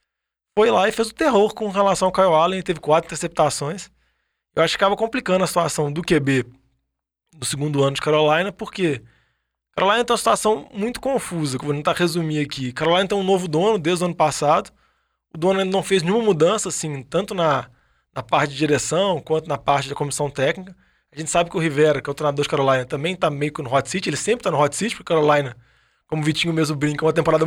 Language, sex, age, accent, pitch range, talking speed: Portuguese, male, 20-39, Brazilian, 150-195 Hz, 230 wpm